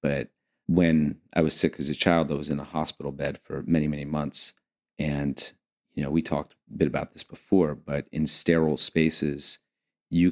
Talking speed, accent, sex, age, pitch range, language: 190 wpm, American, male, 30-49, 75-85 Hz, English